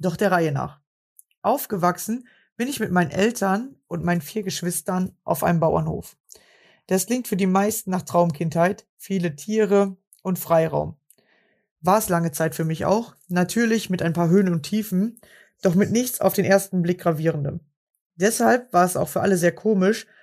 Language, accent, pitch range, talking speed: German, German, 170-205 Hz, 170 wpm